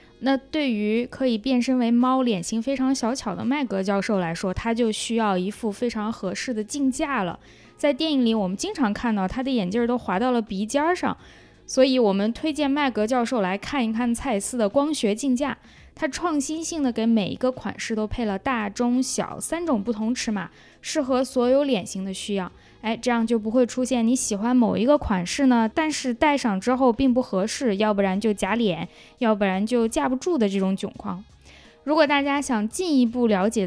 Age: 20-39